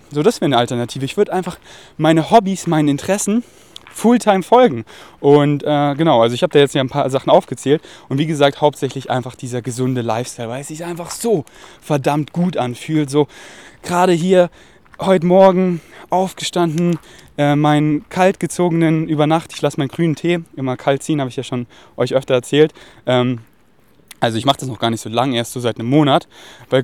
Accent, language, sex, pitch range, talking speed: German, German, male, 130-175 Hz, 190 wpm